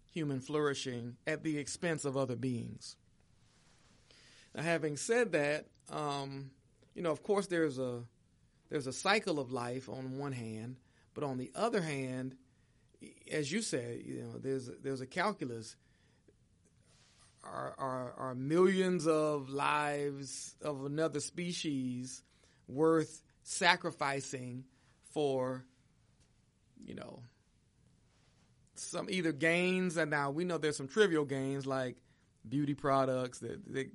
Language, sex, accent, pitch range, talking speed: English, male, American, 125-155 Hz, 125 wpm